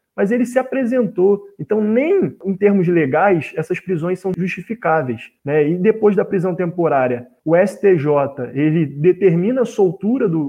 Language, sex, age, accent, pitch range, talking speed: Portuguese, male, 20-39, Brazilian, 165-225 Hz, 150 wpm